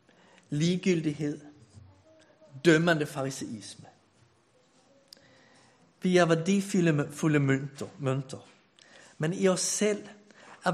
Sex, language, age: male, Danish, 60-79